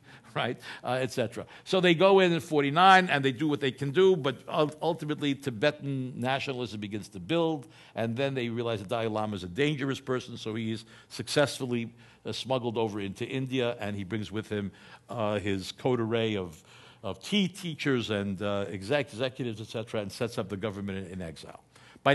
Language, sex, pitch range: English, male, 115-150 Hz